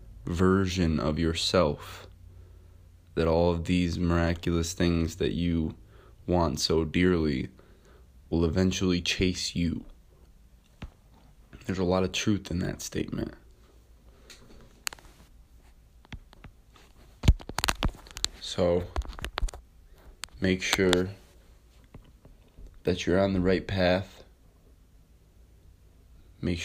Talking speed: 80 wpm